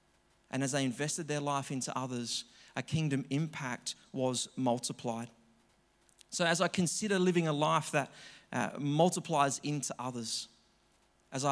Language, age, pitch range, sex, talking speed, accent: English, 30-49, 125-160 Hz, male, 135 wpm, Australian